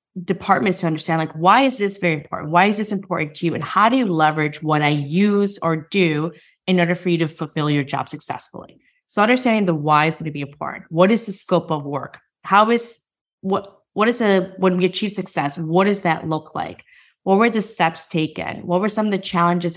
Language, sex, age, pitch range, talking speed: English, female, 20-39, 150-185 Hz, 230 wpm